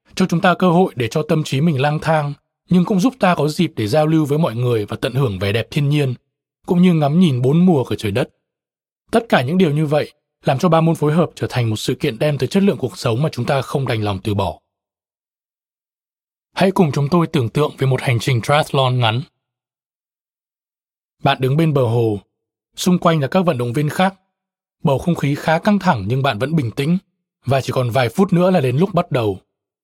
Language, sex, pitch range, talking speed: Vietnamese, male, 130-170 Hz, 235 wpm